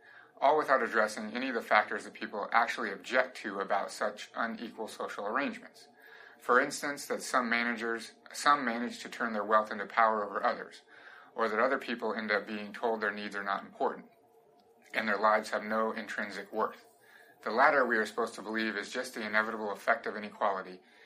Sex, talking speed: male, 190 wpm